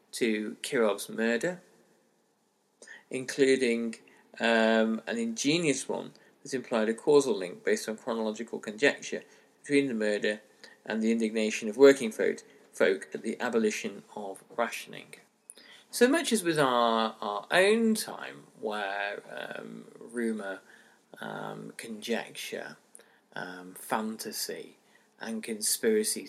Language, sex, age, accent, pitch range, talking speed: English, male, 40-59, British, 110-150 Hz, 105 wpm